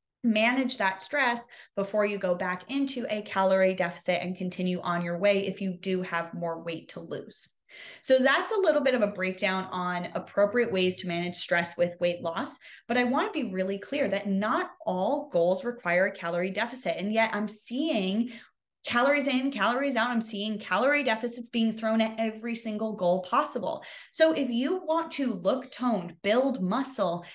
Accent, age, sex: American, 20-39, female